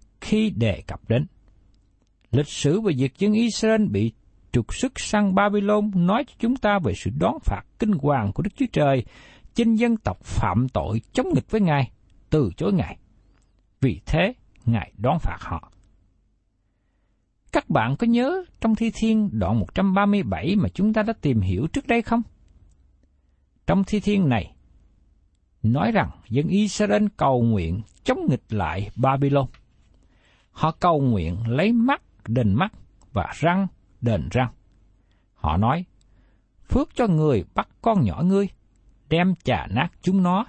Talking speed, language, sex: 155 wpm, Vietnamese, male